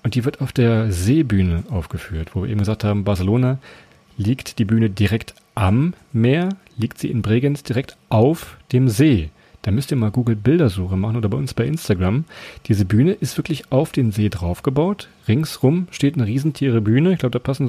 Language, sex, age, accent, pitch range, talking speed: German, male, 40-59, German, 110-145 Hz, 185 wpm